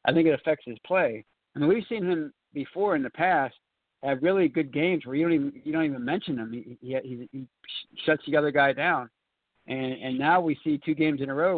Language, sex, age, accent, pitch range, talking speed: English, male, 60-79, American, 130-155 Hz, 245 wpm